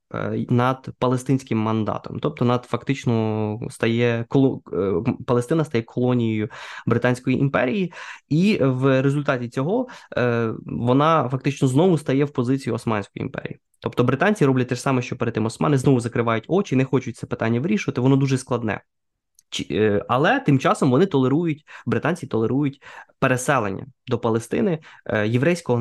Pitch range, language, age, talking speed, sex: 115-135 Hz, Ukrainian, 20-39, 135 wpm, male